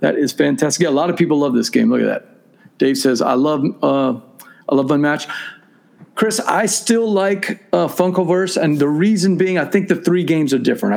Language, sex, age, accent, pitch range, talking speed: English, male, 50-69, American, 150-205 Hz, 215 wpm